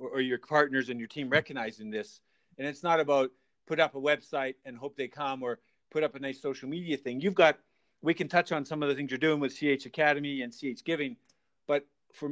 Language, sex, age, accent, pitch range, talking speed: English, male, 40-59, American, 140-175 Hz, 235 wpm